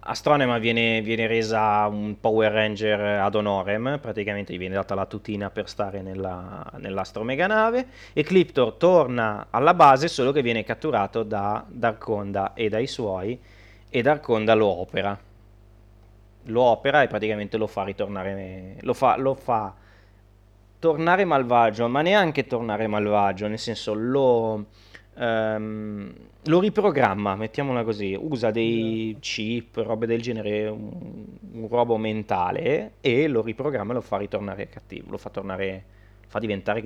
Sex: male